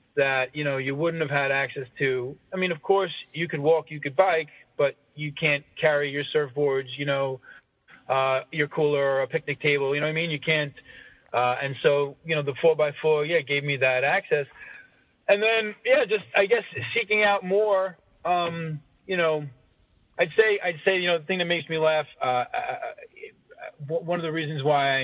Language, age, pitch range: English, 30-49, 135-170 Hz